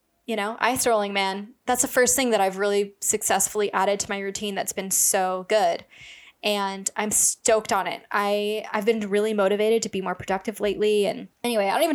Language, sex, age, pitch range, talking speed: English, female, 10-29, 195-230 Hz, 205 wpm